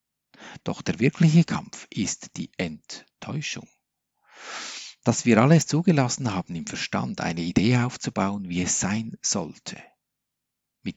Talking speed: 120 wpm